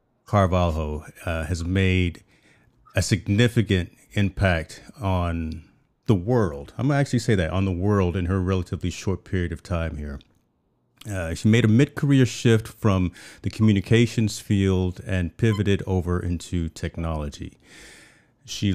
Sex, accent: male, American